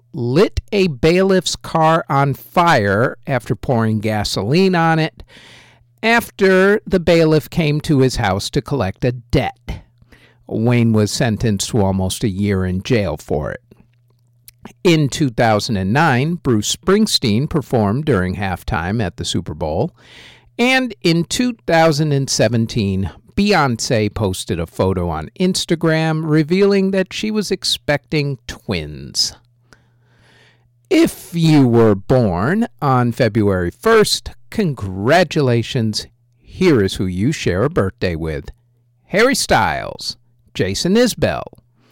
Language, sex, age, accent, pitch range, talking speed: English, male, 50-69, American, 105-160 Hz, 115 wpm